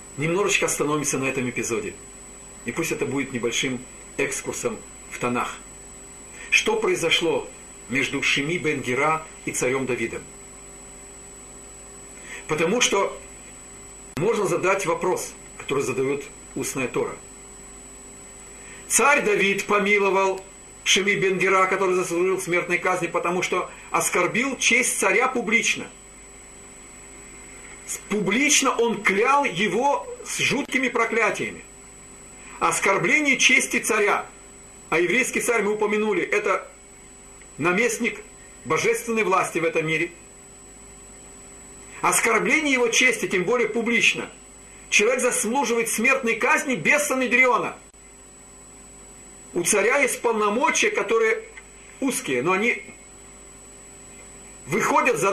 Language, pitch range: Russian, 175-255 Hz